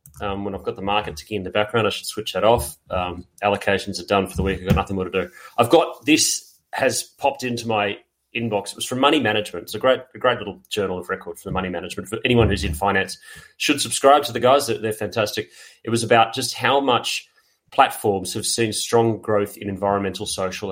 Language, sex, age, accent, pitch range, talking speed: English, male, 30-49, Australian, 100-120 Hz, 230 wpm